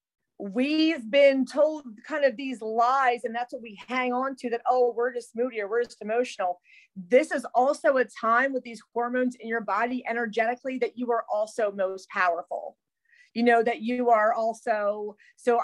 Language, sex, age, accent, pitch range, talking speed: English, female, 30-49, American, 220-255 Hz, 185 wpm